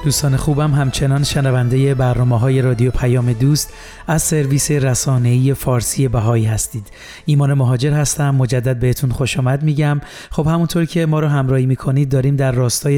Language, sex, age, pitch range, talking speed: Persian, male, 30-49, 130-150 Hz, 150 wpm